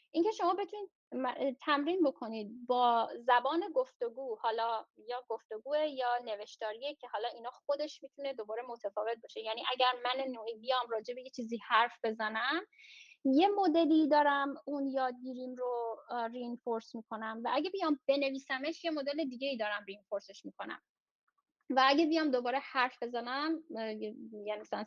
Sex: female